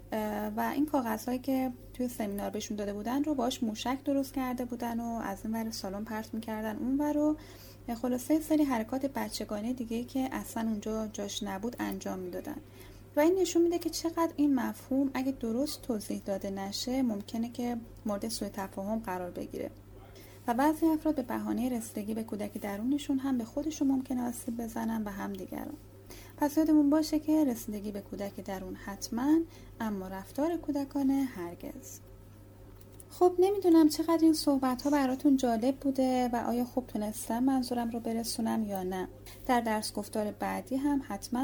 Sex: female